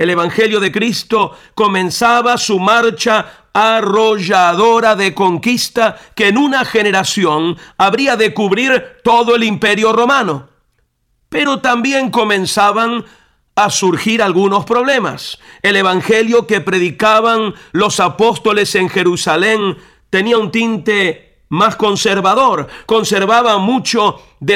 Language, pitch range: Spanish, 185-225 Hz